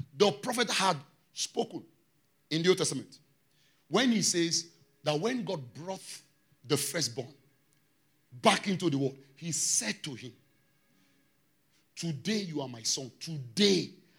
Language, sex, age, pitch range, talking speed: English, male, 40-59, 145-185 Hz, 130 wpm